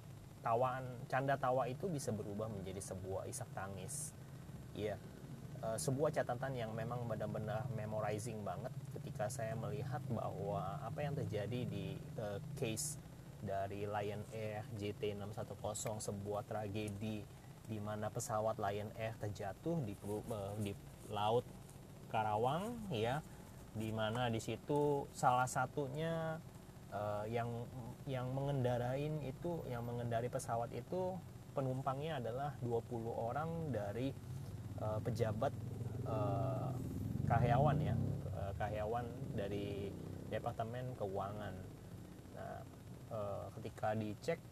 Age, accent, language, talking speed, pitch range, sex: 30-49, native, Indonesian, 110 wpm, 105-135 Hz, male